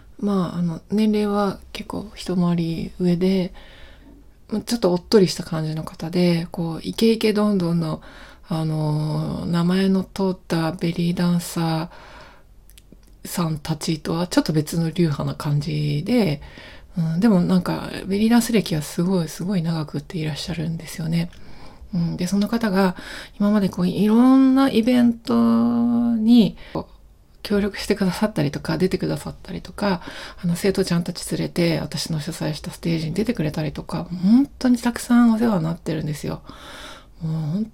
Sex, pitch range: female, 165-210 Hz